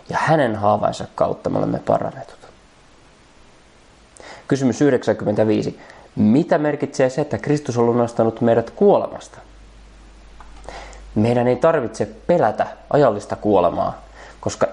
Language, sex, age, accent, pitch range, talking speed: Finnish, male, 20-39, native, 105-140 Hz, 100 wpm